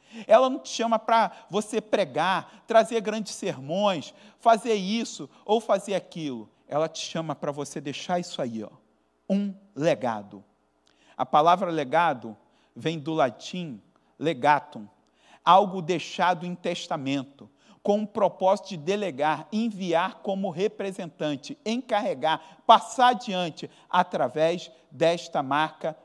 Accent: Brazilian